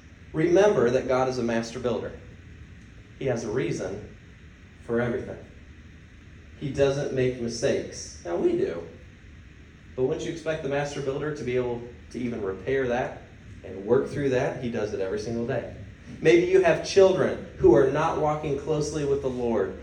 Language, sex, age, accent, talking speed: English, male, 30-49, American, 170 wpm